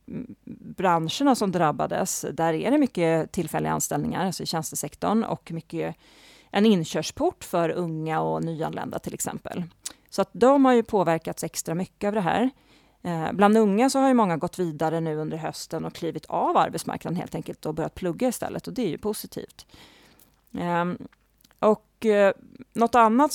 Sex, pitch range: female, 165-220 Hz